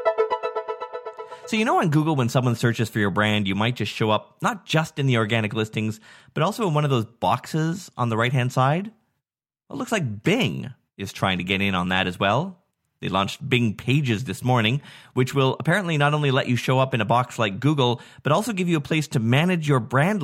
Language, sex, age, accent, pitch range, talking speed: English, male, 30-49, American, 105-145 Hz, 225 wpm